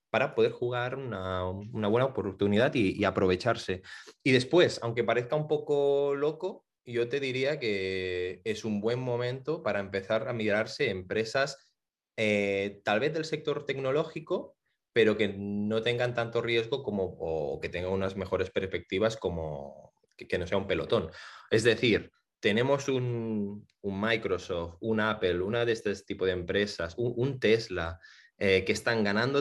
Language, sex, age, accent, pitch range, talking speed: Spanish, male, 20-39, Spanish, 100-140 Hz, 155 wpm